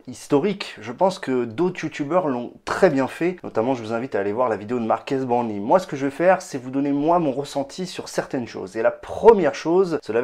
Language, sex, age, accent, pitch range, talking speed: French, male, 30-49, French, 130-190 Hz, 245 wpm